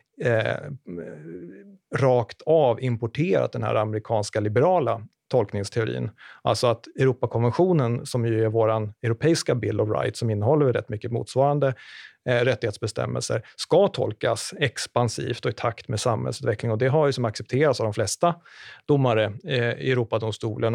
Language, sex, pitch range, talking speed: Swedish, male, 110-125 Hz, 140 wpm